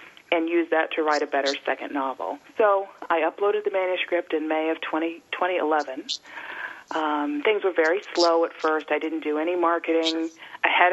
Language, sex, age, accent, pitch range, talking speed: English, female, 40-59, American, 155-185 Hz, 175 wpm